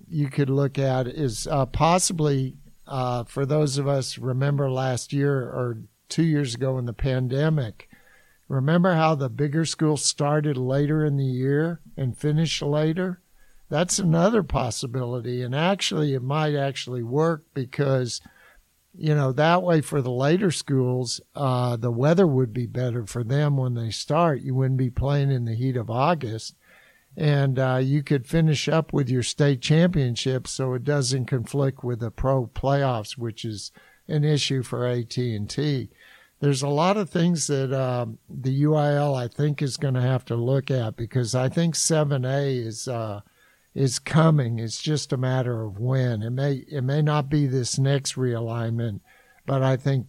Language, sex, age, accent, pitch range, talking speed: English, male, 60-79, American, 125-150 Hz, 170 wpm